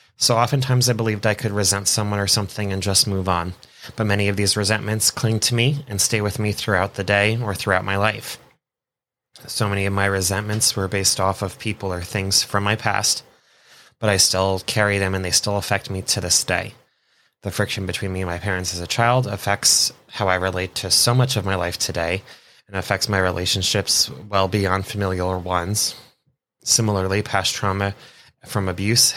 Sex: male